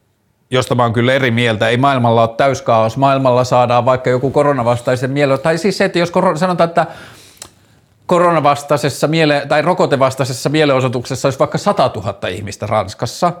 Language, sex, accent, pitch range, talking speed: Finnish, male, native, 115-150 Hz, 150 wpm